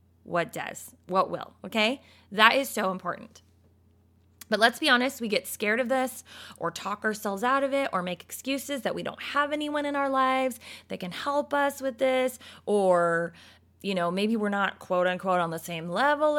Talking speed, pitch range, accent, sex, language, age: 195 wpm, 190-270 Hz, American, female, English, 20-39